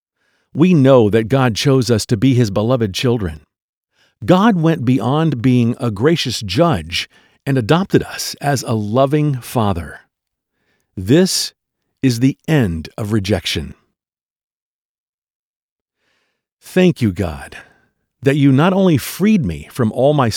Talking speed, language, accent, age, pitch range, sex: 125 wpm, English, American, 50-69, 105-145 Hz, male